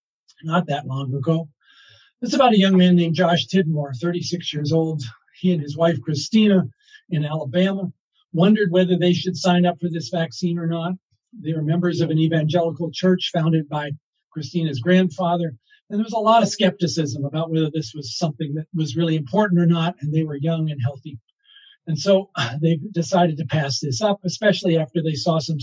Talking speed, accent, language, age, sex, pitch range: 190 wpm, American, English, 50-69, male, 150-185 Hz